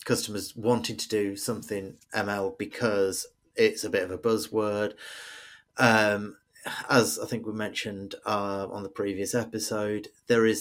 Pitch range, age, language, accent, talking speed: 100-115 Hz, 30-49, English, British, 145 wpm